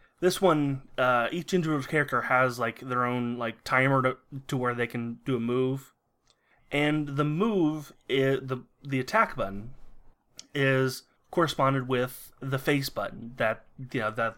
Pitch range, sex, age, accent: 120-145 Hz, male, 20-39, American